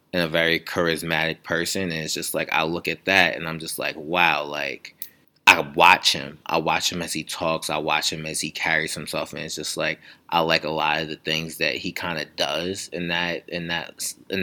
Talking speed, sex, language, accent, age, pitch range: 215 wpm, male, English, American, 20-39, 80-90 Hz